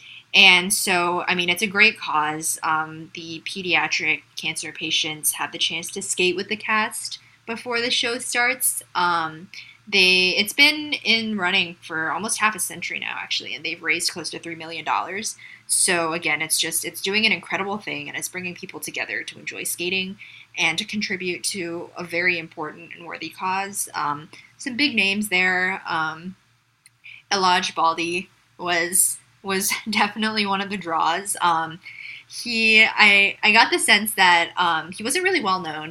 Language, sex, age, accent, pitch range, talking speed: English, female, 20-39, American, 165-215 Hz, 170 wpm